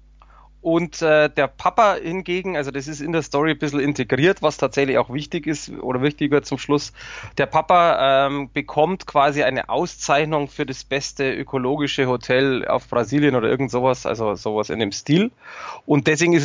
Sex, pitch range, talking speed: male, 135-160 Hz, 175 wpm